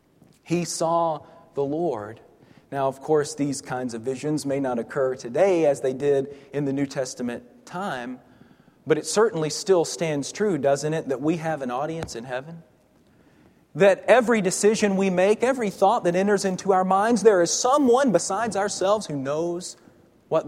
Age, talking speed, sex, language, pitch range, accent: 40-59, 170 wpm, male, English, 145-190 Hz, American